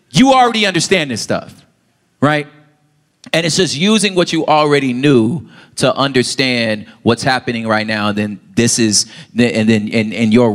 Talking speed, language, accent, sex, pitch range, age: 170 wpm, English, American, male, 110-150 Hz, 30-49